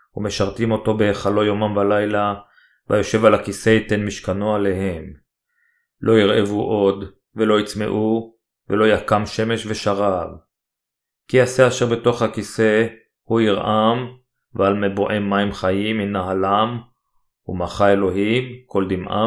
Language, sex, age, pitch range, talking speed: Hebrew, male, 30-49, 95-110 Hz, 110 wpm